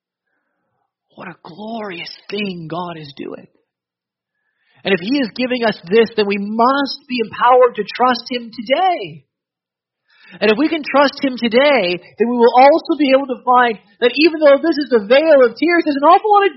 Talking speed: 190 wpm